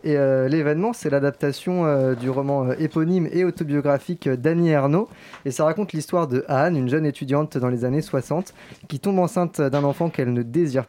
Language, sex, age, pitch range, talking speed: French, male, 20-39, 135-170 Hz, 200 wpm